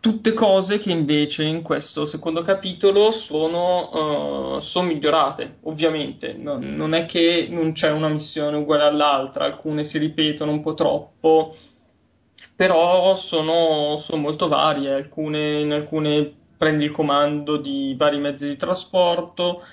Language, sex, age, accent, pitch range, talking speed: Italian, male, 20-39, native, 145-160 Hz, 125 wpm